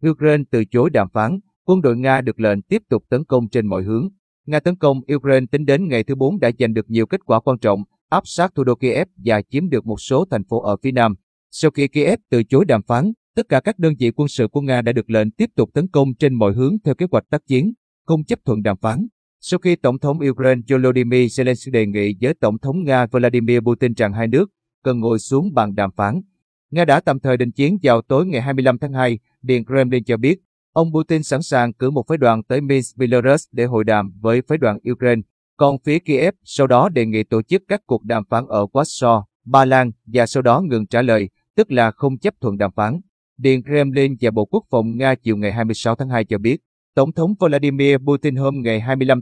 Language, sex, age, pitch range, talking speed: Vietnamese, male, 30-49, 115-145 Hz, 235 wpm